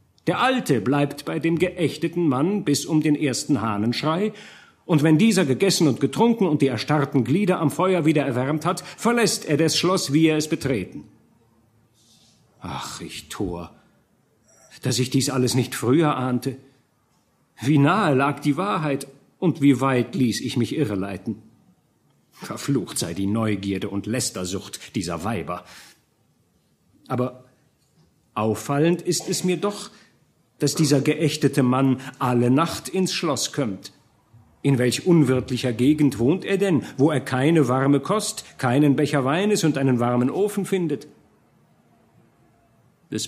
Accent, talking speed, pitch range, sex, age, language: German, 140 wpm, 115-155 Hz, male, 50-69, German